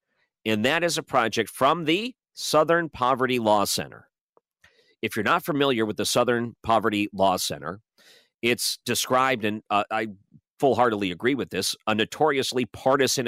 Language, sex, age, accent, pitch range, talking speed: English, male, 40-59, American, 105-135 Hz, 150 wpm